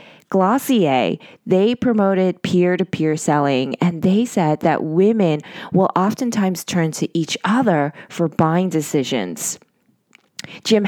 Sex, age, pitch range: female, 20-39, 165-220 Hz